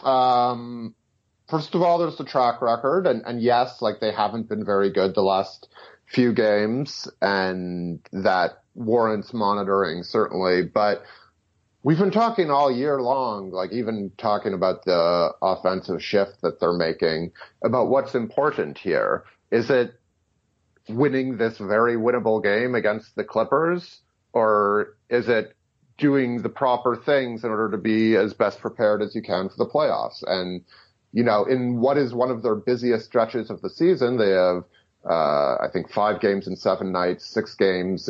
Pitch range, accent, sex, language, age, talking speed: 100-130 Hz, American, male, English, 30-49, 160 wpm